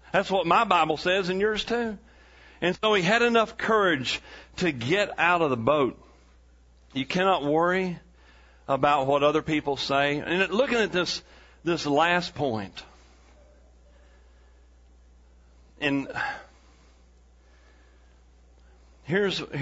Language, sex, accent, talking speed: English, male, American, 115 wpm